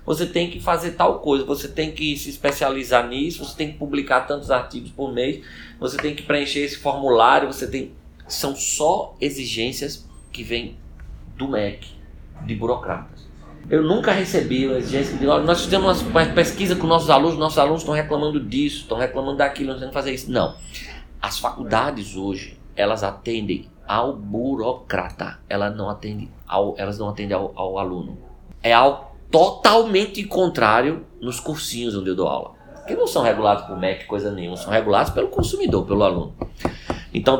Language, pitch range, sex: Portuguese, 105-140 Hz, male